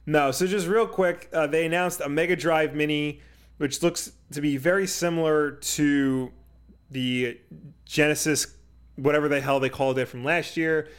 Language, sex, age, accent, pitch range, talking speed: English, male, 30-49, American, 130-160 Hz, 165 wpm